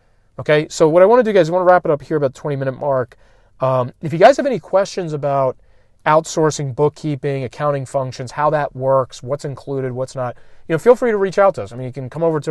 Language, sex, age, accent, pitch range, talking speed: English, male, 30-49, American, 120-150 Hz, 265 wpm